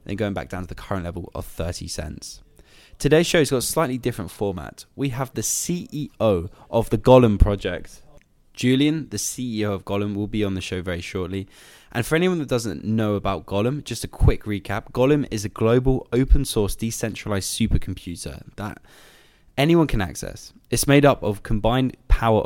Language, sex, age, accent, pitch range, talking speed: English, male, 10-29, British, 95-125 Hz, 180 wpm